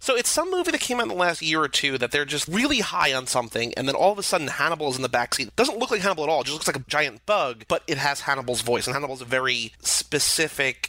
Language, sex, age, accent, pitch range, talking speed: English, male, 30-49, American, 125-165 Hz, 305 wpm